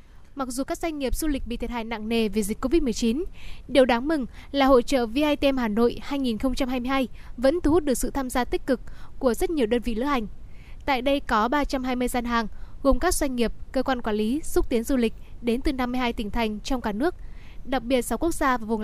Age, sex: 10-29, female